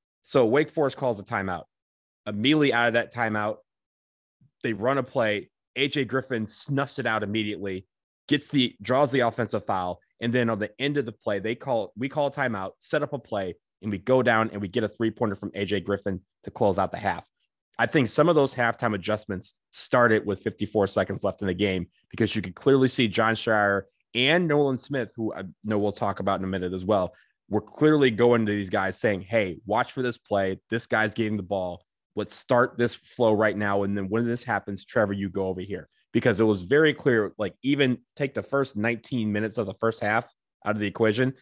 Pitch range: 100-120 Hz